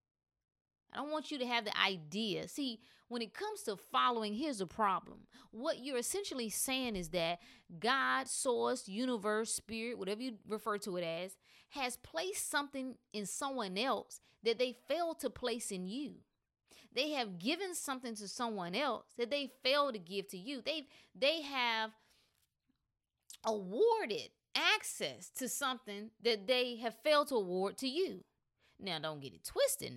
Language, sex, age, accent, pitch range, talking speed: English, female, 30-49, American, 170-250 Hz, 160 wpm